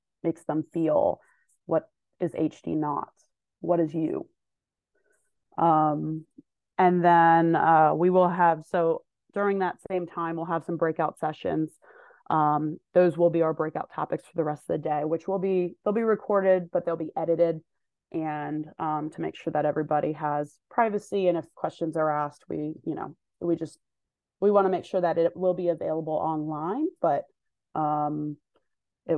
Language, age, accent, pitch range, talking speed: English, 30-49, American, 155-175 Hz, 170 wpm